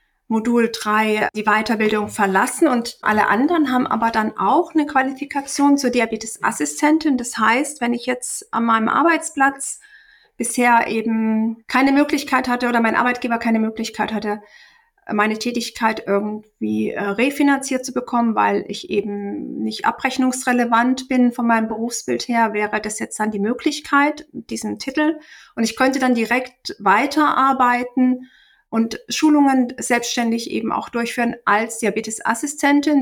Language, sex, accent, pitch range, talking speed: German, female, German, 220-255 Hz, 135 wpm